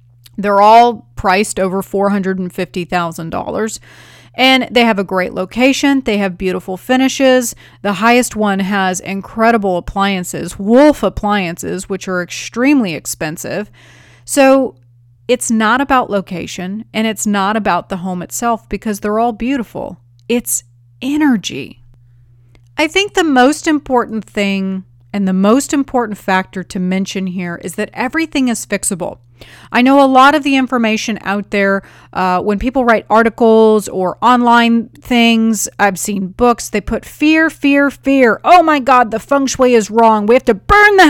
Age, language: 30-49, English